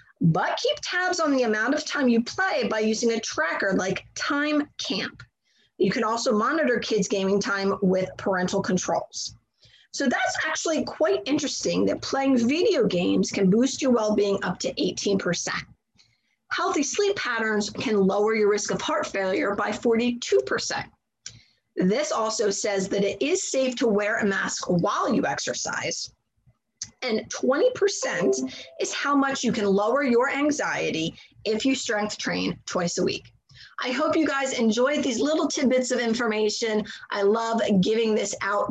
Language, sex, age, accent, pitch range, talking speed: English, female, 30-49, American, 200-270 Hz, 155 wpm